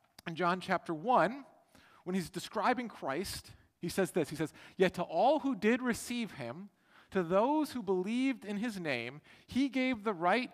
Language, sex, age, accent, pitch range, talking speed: English, male, 40-59, American, 170-235 Hz, 175 wpm